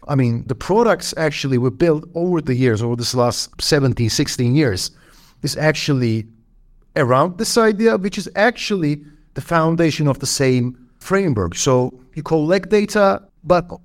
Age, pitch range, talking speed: 50-69, 130-185 Hz, 150 wpm